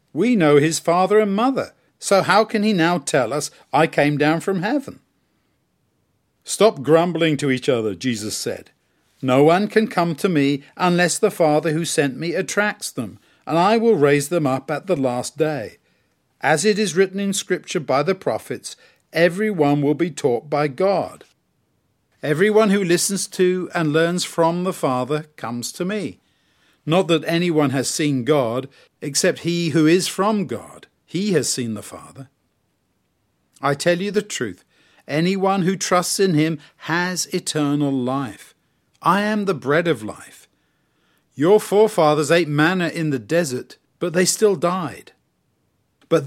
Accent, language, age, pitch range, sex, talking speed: British, English, 50-69, 145-195 Hz, male, 160 wpm